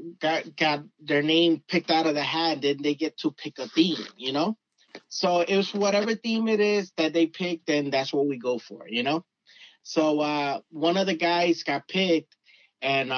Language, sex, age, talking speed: English, male, 20-39, 200 wpm